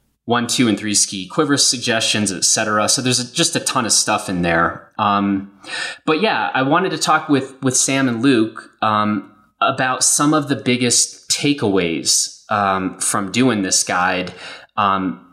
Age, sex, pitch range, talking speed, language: 30-49, male, 100-135 Hz, 170 wpm, English